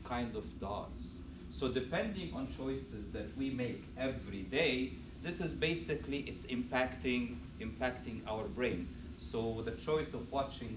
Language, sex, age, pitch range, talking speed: English, male, 40-59, 90-140 Hz, 140 wpm